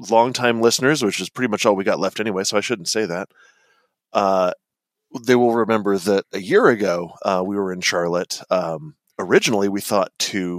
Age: 30-49